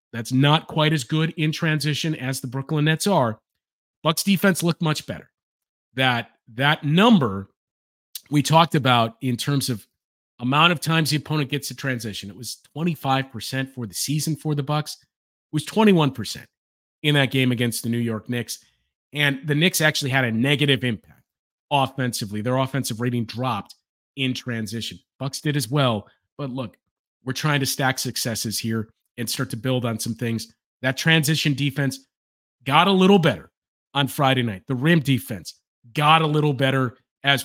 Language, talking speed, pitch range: English, 170 wpm, 120-150 Hz